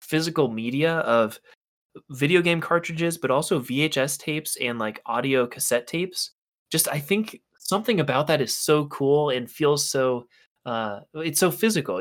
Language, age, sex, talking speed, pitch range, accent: English, 20-39, male, 155 wpm, 125-160 Hz, American